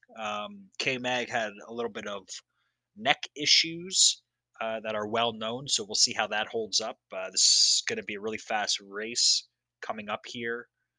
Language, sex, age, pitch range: English, male, 20-39, 105-125 Hz